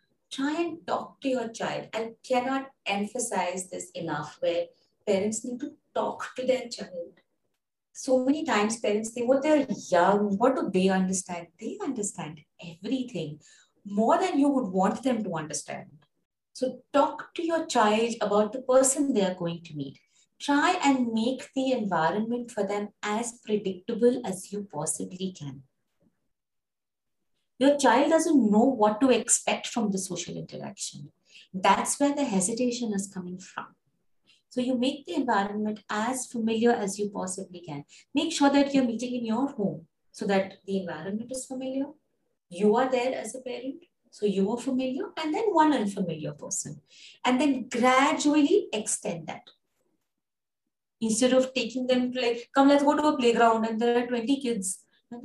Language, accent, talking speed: English, Indian, 160 wpm